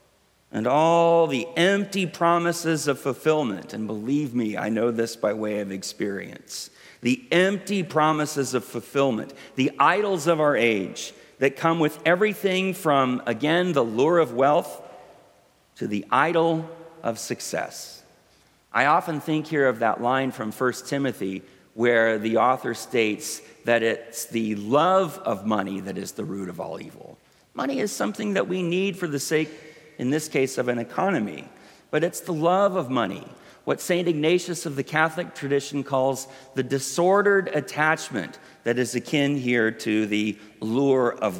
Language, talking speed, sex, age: English, 160 wpm, male, 40-59